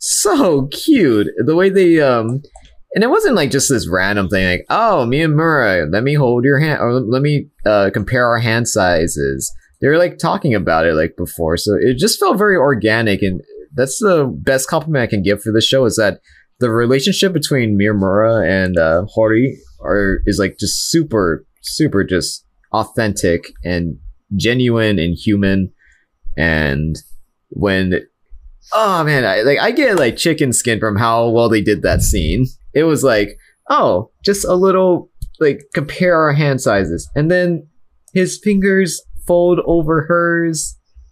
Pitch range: 95-145 Hz